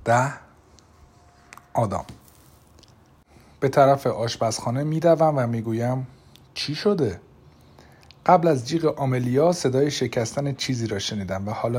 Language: Persian